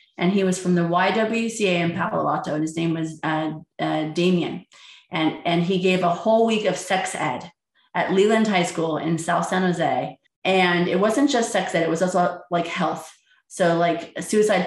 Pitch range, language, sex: 170-210 Hz, English, female